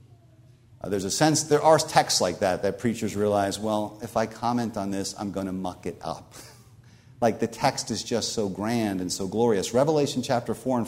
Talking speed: 210 wpm